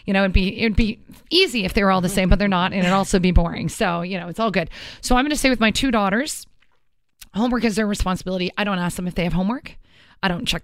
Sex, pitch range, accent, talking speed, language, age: female, 175-210 Hz, American, 280 wpm, English, 30-49